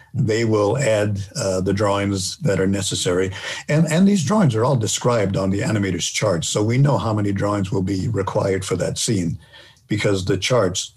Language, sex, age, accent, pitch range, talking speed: English, male, 50-69, American, 95-120 Hz, 190 wpm